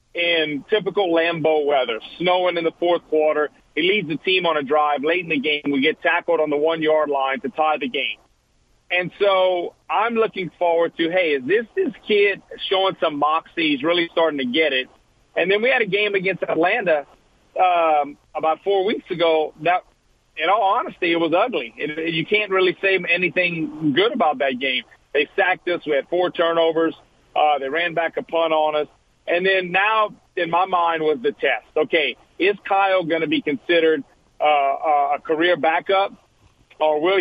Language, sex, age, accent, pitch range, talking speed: English, male, 40-59, American, 150-180 Hz, 190 wpm